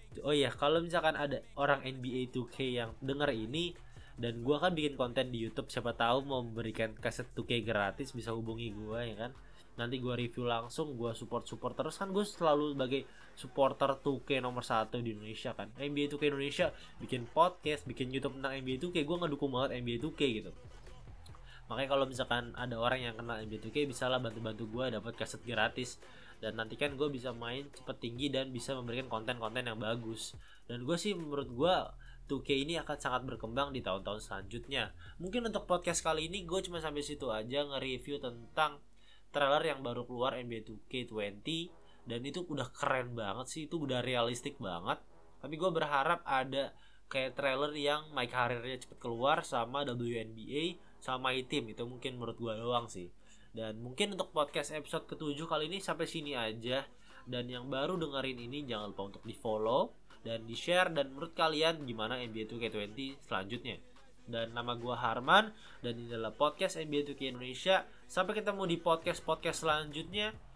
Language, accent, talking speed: Indonesian, native, 170 wpm